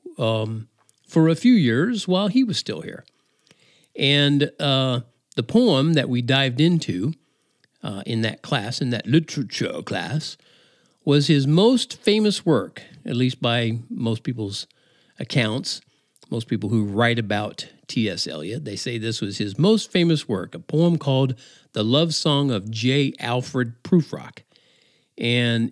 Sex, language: male, English